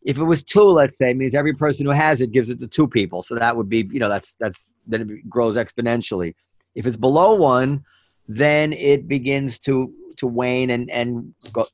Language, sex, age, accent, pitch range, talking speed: English, male, 30-49, American, 115-150 Hz, 220 wpm